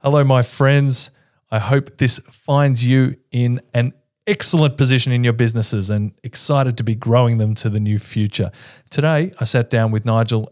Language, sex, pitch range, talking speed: English, male, 100-125 Hz, 175 wpm